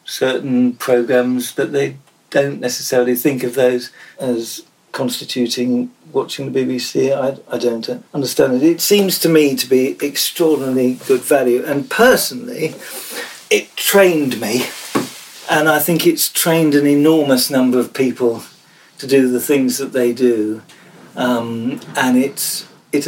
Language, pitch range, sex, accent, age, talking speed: English, 125-160 Hz, male, British, 50-69, 140 wpm